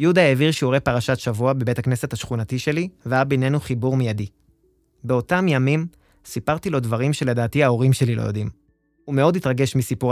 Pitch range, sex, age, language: 115-145 Hz, male, 20-39, Hebrew